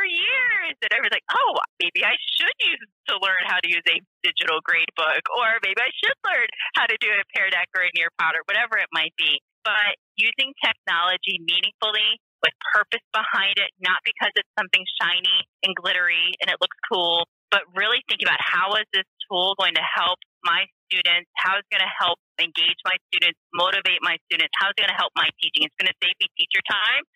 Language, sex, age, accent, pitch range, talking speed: English, female, 30-49, American, 175-225 Hz, 215 wpm